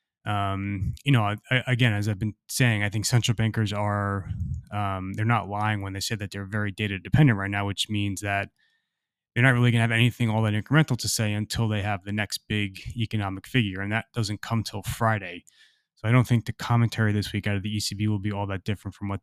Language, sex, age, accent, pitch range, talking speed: English, male, 20-39, American, 100-115 Hz, 235 wpm